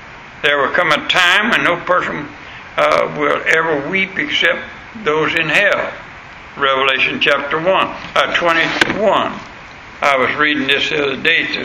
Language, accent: English, American